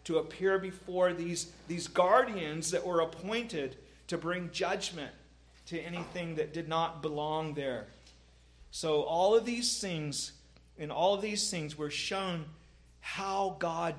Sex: male